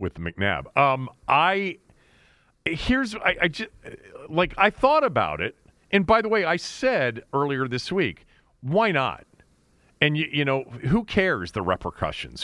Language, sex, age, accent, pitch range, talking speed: English, male, 40-59, American, 110-180 Hz, 155 wpm